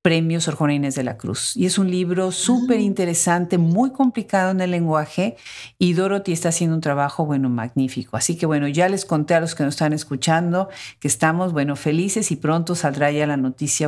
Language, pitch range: Spanish, 150-185 Hz